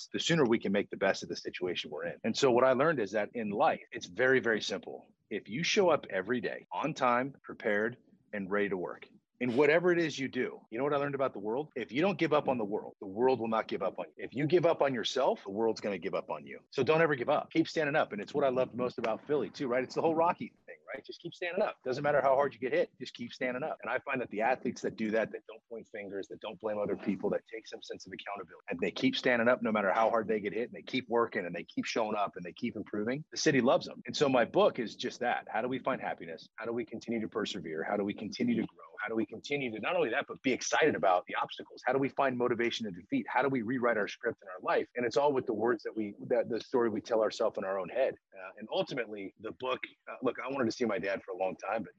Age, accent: 30-49, American